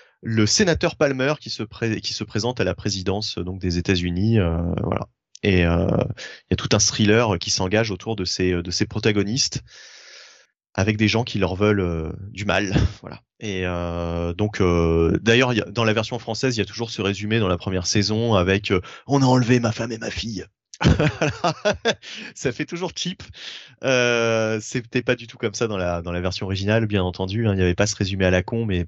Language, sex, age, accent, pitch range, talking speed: French, male, 20-39, French, 95-120 Hz, 220 wpm